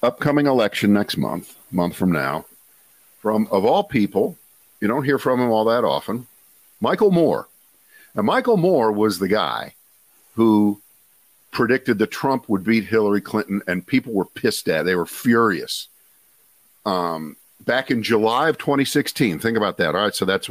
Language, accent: English, American